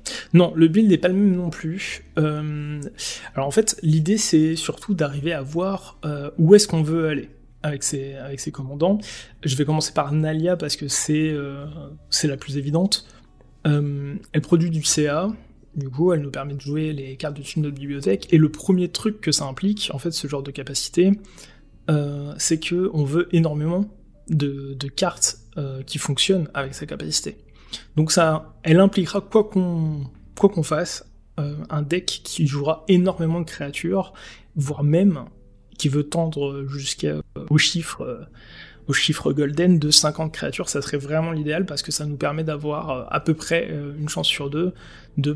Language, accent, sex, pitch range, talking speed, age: French, French, male, 145-170 Hz, 185 wpm, 20-39